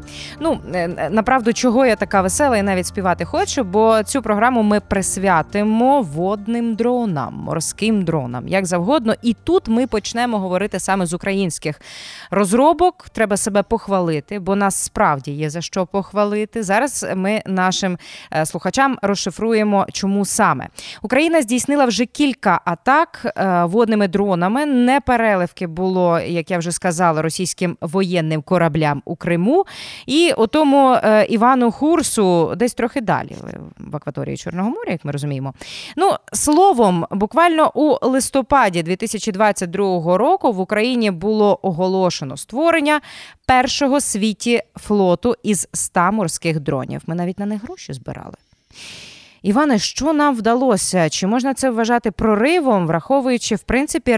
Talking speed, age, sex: 130 wpm, 20-39, female